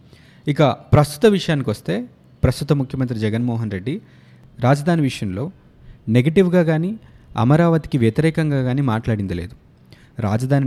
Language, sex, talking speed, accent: Telugu, male, 95 wpm, native